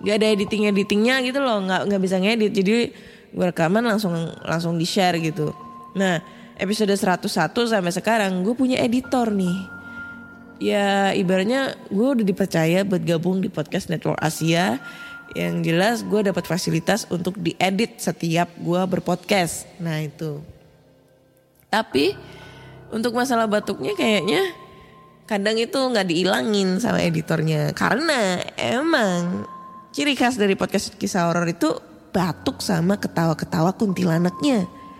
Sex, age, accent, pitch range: female, 20-39, native, 170-220 Hz